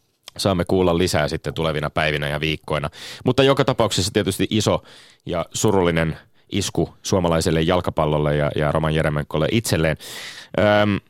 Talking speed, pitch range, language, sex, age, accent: 130 wpm, 85-110 Hz, Finnish, male, 30-49, native